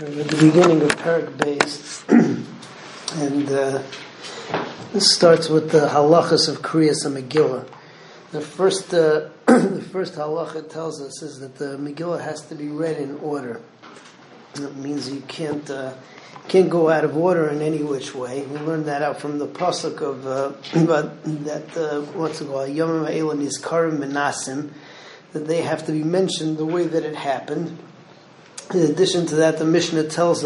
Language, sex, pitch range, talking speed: English, male, 150-175 Hz, 170 wpm